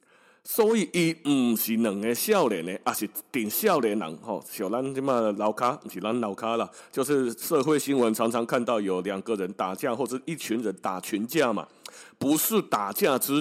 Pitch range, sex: 110-185 Hz, male